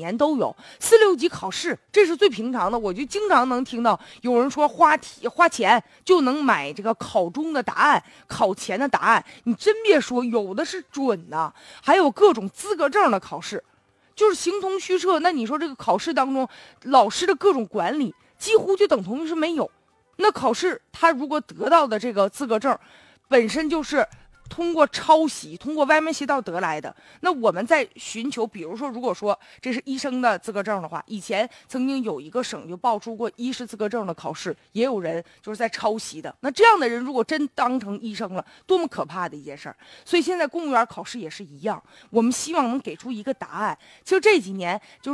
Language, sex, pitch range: Chinese, female, 225-320 Hz